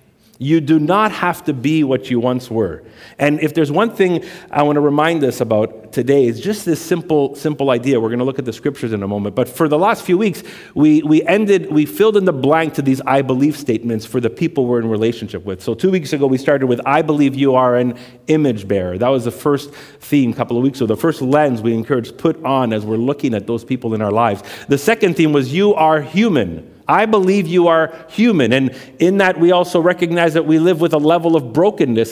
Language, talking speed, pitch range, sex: English, 245 wpm, 125-170 Hz, male